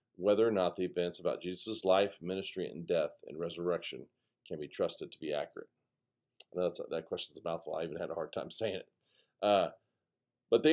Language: English